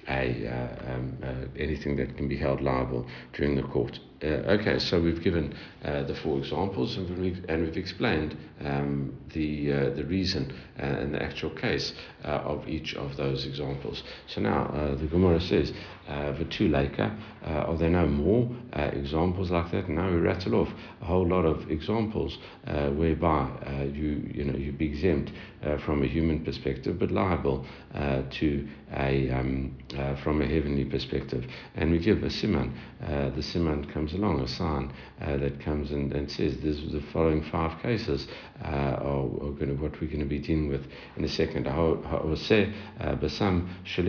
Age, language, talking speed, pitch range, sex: 60-79, English, 175 wpm, 70-85 Hz, male